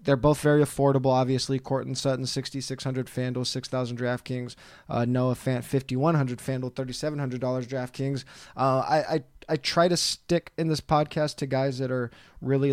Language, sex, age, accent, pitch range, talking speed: English, male, 20-39, American, 130-145 Hz, 185 wpm